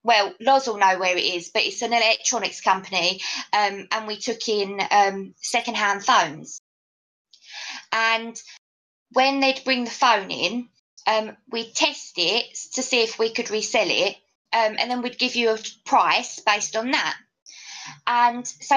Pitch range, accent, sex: 225-285 Hz, British, female